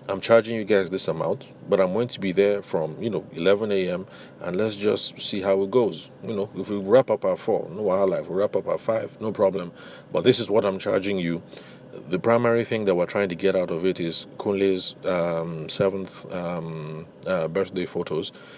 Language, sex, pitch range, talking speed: English, male, 85-105 Hz, 215 wpm